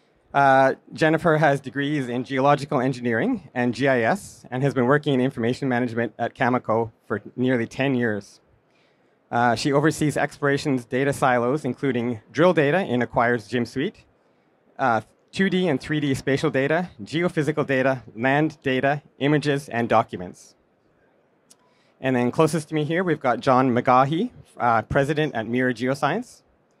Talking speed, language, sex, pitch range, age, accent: 140 wpm, English, male, 125-150 Hz, 30-49, American